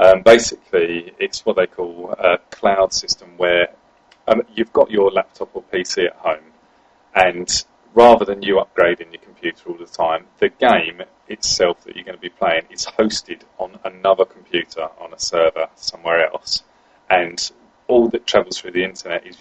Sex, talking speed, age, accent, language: male, 175 wpm, 30-49, British, English